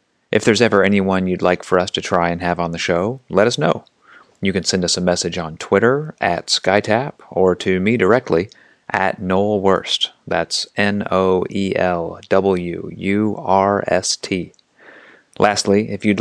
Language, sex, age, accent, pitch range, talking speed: English, male, 30-49, American, 90-100 Hz, 145 wpm